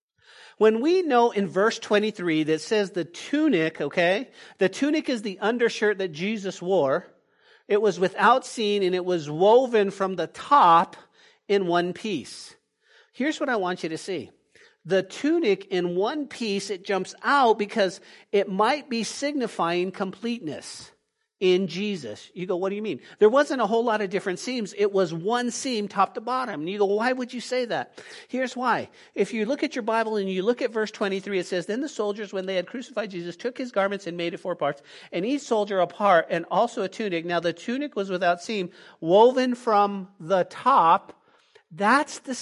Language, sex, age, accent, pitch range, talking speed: English, male, 50-69, American, 195-255 Hz, 195 wpm